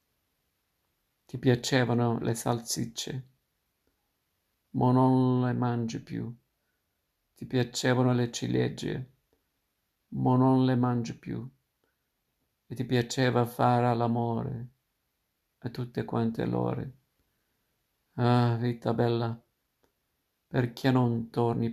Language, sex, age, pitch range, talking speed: Italian, male, 50-69, 115-125 Hz, 90 wpm